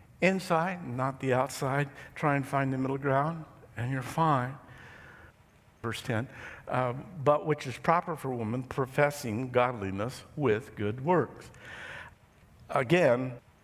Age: 60-79